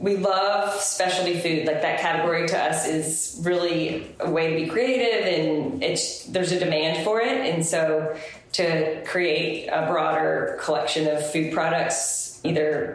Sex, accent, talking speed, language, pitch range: female, American, 160 wpm, English, 155-180 Hz